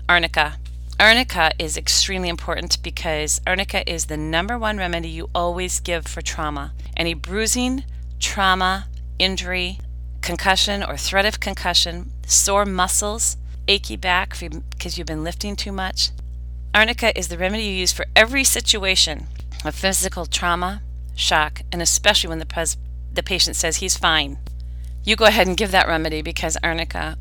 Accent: American